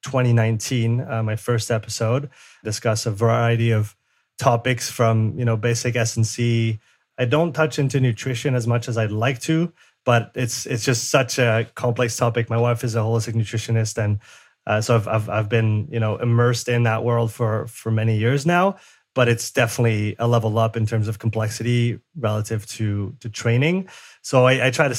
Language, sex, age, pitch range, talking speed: English, male, 30-49, 115-130 Hz, 190 wpm